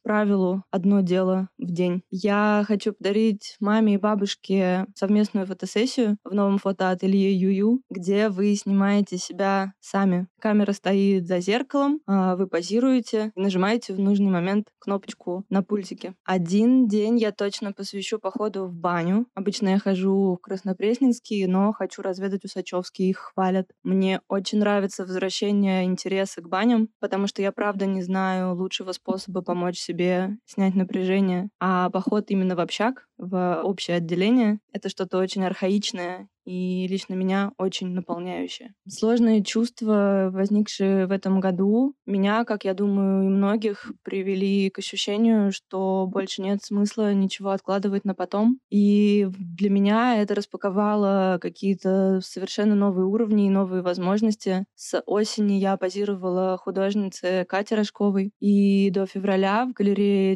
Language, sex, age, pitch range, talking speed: Russian, female, 20-39, 190-210 Hz, 135 wpm